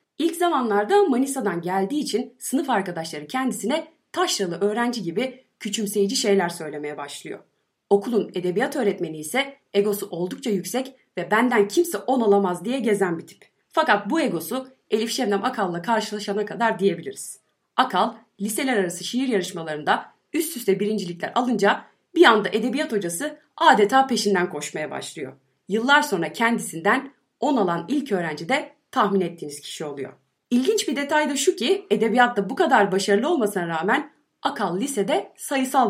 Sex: female